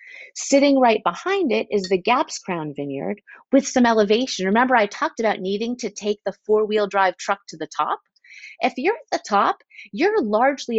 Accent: American